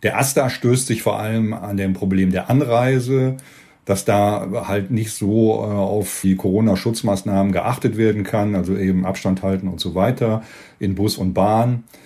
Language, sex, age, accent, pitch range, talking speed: German, male, 40-59, German, 100-115 Hz, 165 wpm